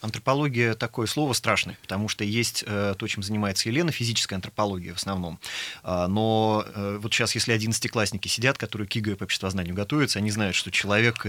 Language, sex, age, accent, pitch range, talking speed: Russian, male, 30-49, native, 105-120 Hz, 185 wpm